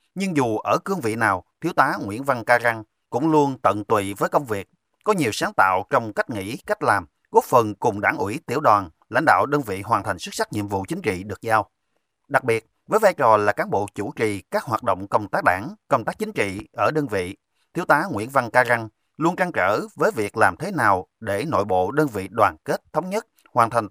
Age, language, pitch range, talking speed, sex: 30-49, Vietnamese, 105-155 Hz, 245 wpm, male